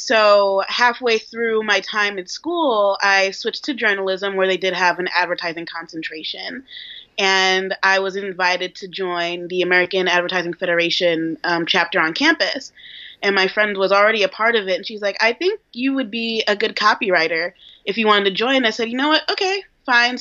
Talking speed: 190 wpm